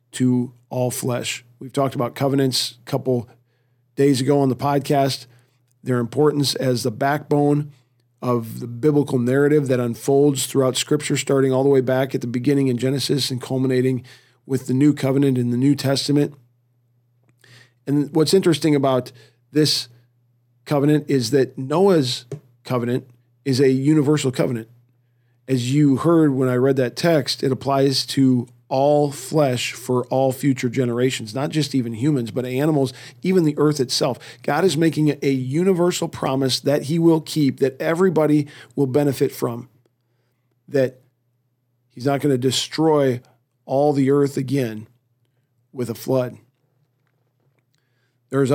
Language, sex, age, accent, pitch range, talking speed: English, male, 40-59, American, 125-145 Hz, 145 wpm